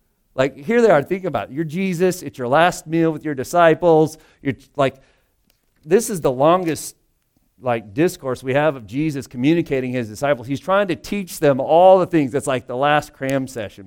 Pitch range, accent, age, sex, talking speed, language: 95-140 Hz, American, 40-59, male, 195 wpm, English